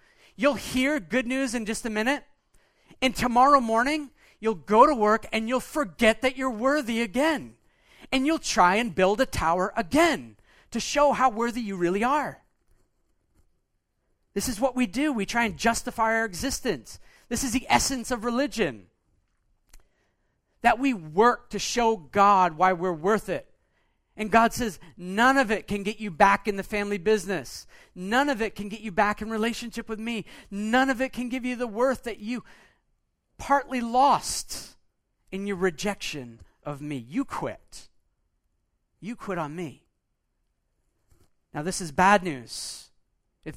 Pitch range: 165-245 Hz